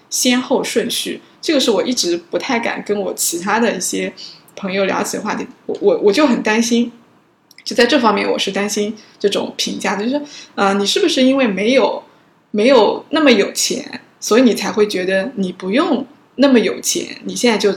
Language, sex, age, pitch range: Chinese, female, 20-39, 195-245 Hz